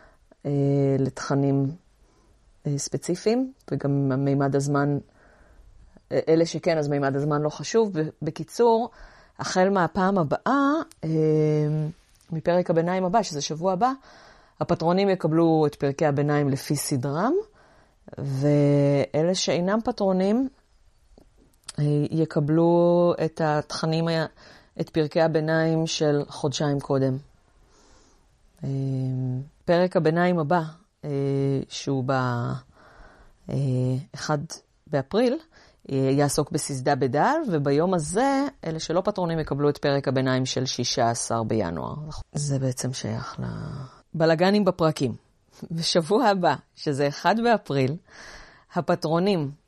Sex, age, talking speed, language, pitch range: female, 30-49, 90 wpm, Hebrew, 140-175 Hz